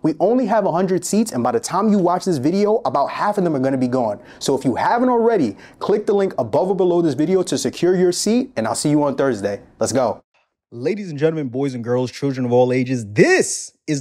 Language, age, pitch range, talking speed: English, 30-49, 125-180 Hz, 250 wpm